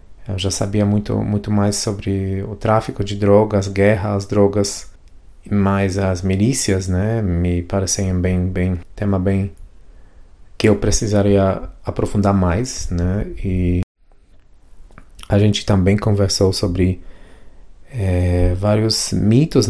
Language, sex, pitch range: Portuguese, male, 90-105 Hz